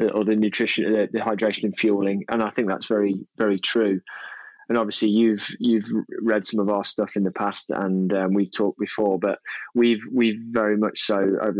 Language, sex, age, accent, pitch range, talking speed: English, male, 20-39, British, 95-105 Hz, 195 wpm